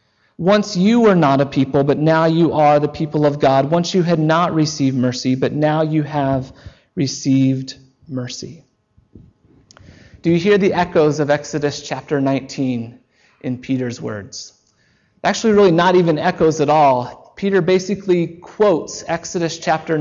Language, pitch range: English, 135-175 Hz